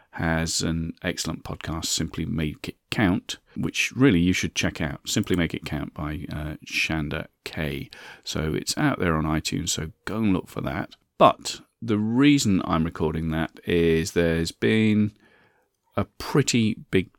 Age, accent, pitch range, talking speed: 40-59, British, 80-90 Hz, 160 wpm